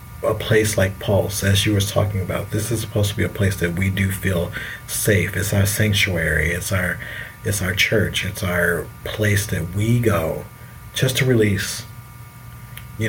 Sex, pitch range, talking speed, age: male, 100-120 Hz, 180 wpm, 30-49